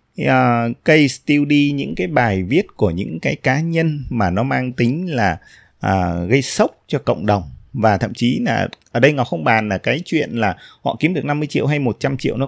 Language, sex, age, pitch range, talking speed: Vietnamese, male, 20-39, 100-145 Hz, 220 wpm